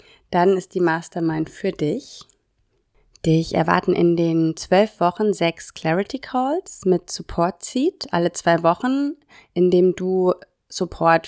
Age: 30-49